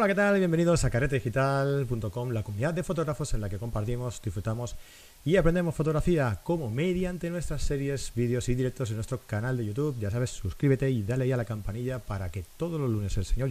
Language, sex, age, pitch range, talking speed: Spanish, male, 30-49, 105-150 Hz, 200 wpm